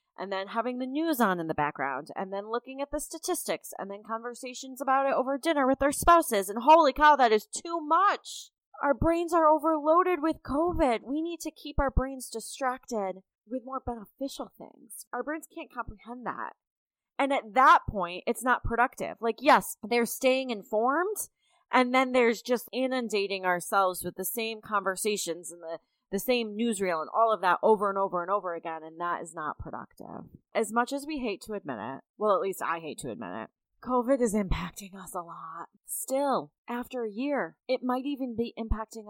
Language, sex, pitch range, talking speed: English, female, 195-265 Hz, 195 wpm